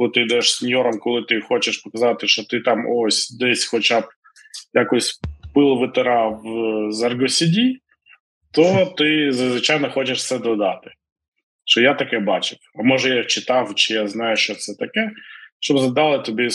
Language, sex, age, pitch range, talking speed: Ukrainian, male, 20-39, 115-155 Hz, 155 wpm